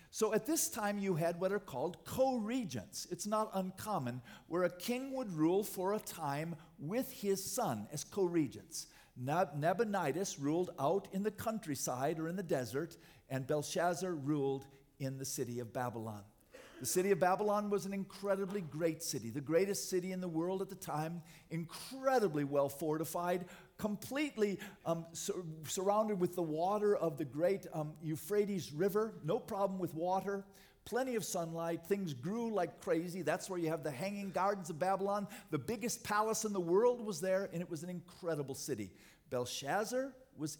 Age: 50-69